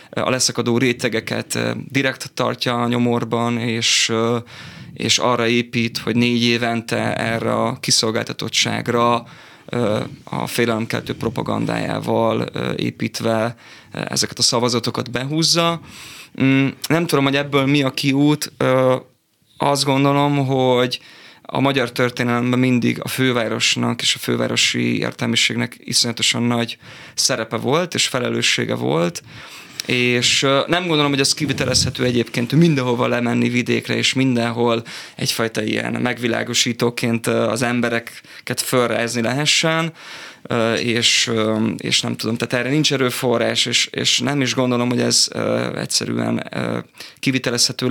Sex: male